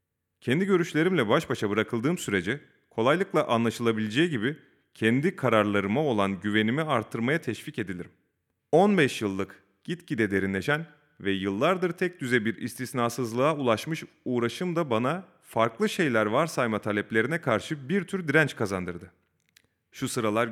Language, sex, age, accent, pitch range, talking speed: Turkish, male, 30-49, native, 105-165 Hz, 120 wpm